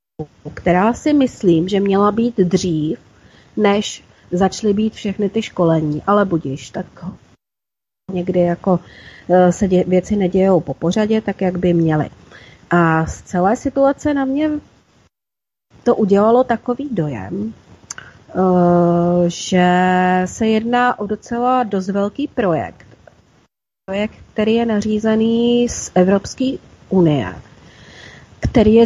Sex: female